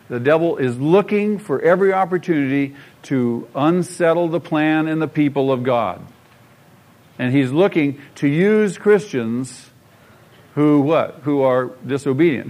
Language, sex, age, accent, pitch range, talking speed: English, male, 50-69, American, 140-225 Hz, 130 wpm